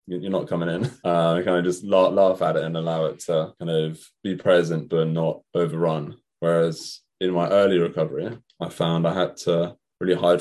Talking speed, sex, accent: 195 wpm, male, British